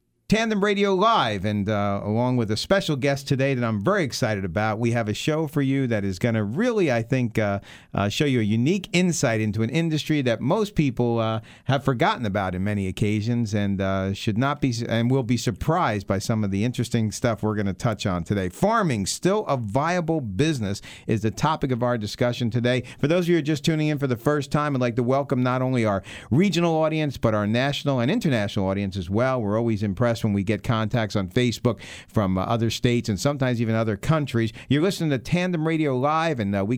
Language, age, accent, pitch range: English, 50-69, American, 110-145 Hz